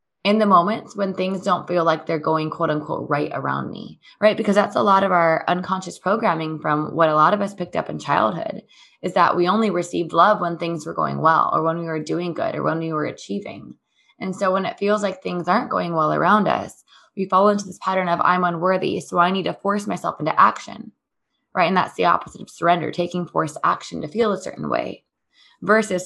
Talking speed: 230 wpm